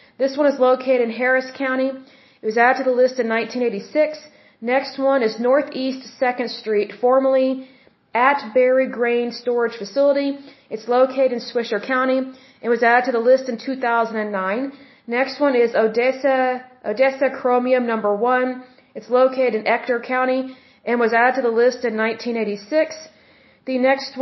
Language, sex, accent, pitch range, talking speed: Bengali, female, American, 230-265 Hz, 160 wpm